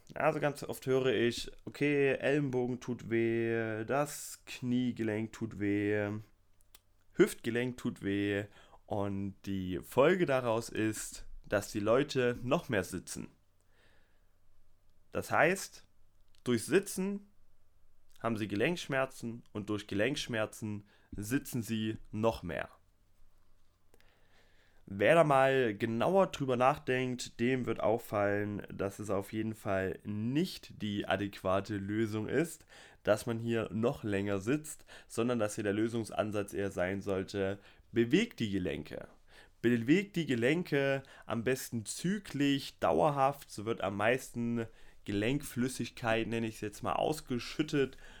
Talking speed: 120 wpm